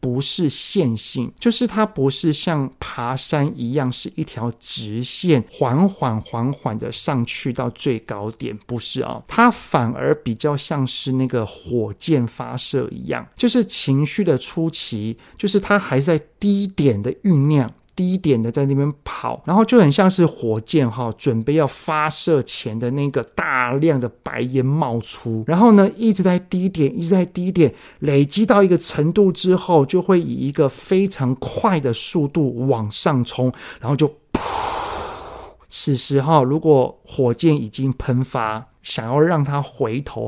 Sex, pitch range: male, 125-165 Hz